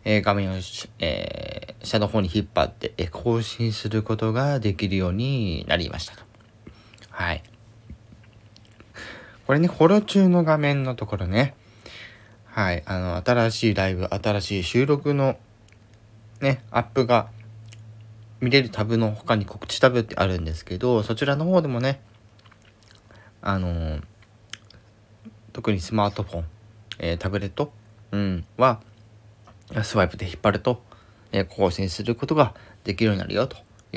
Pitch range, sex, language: 100-115 Hz, male, Japanese